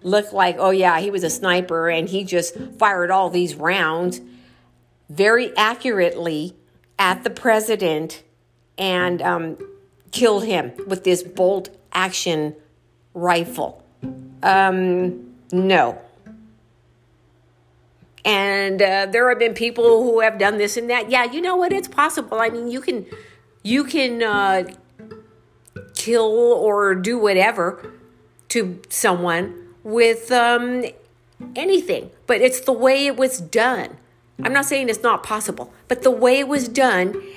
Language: English